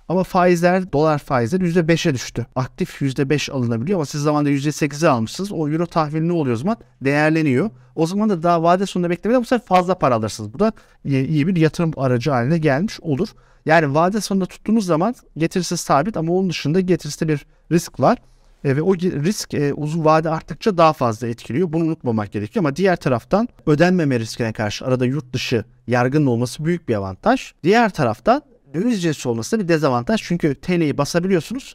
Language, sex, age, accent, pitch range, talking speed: Turkish, male, 50-69, native, 120-175 Hz, 180 wpm